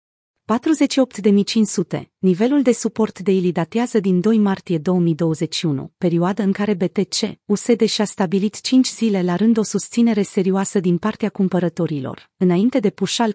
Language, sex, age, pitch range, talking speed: Romanian, female, 30-49, 180-220 Hz, 135 wpm